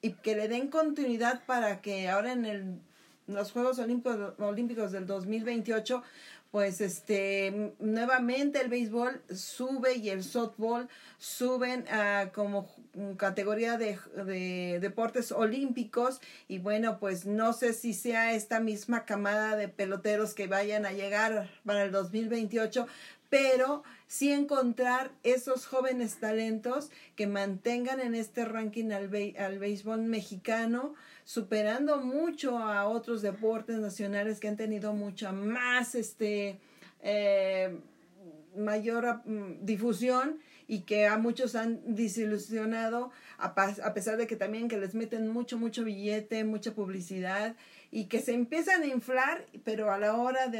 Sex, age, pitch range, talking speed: female, 40-59, 205-240 Hz, 140 wpm